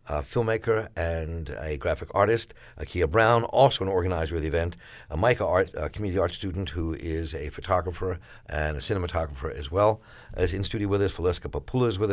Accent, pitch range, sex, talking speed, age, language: American, 80-110 Hz, male, 205 wpm, 60-79, English